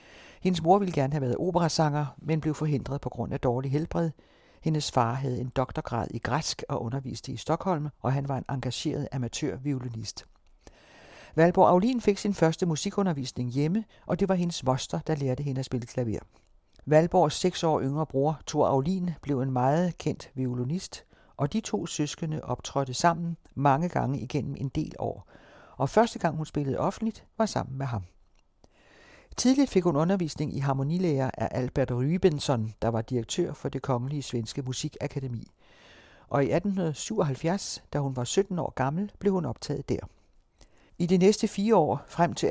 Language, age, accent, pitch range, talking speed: Danish, 60-79, native, 130-170 Hz, 170 wpm